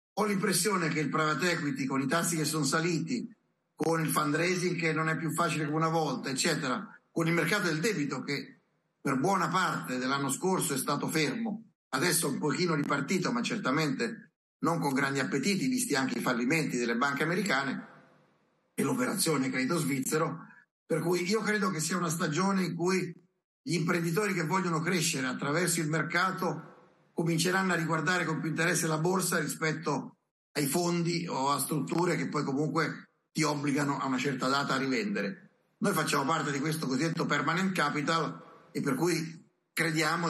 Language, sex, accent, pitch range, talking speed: Italian, male, native, 145-180 Hz, 170 wpm